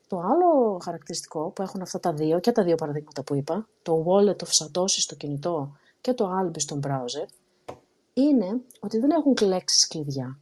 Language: Greek